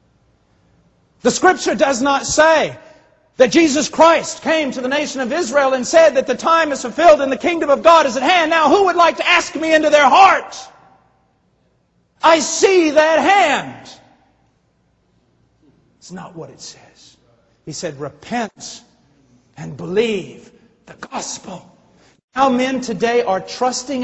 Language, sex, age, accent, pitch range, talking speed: English, male, 50-69, American, 220-330 Hz, 150 wpm